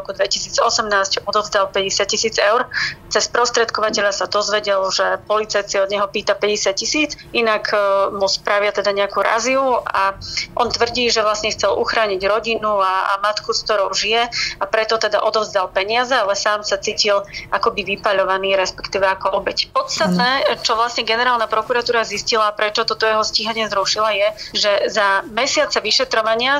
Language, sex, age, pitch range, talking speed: Slovak, female, 30-49, 200-225 Hz, 150 wpm